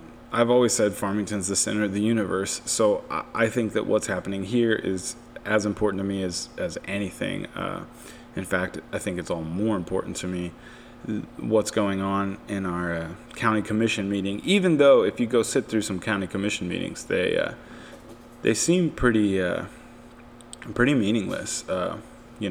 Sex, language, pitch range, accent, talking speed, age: male, English, 95-110 Hz, American, 175 wpm, 20-39